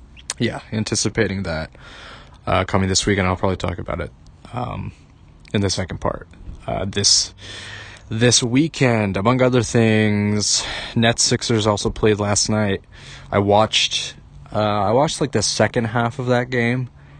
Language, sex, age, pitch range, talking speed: English, male, 20-39, 95-110 Hz, 150 wpm